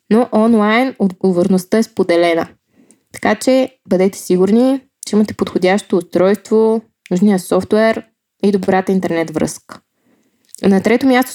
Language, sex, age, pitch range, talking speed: Bulgarian, female, 20-39, 190-230 Hz, 115 wpm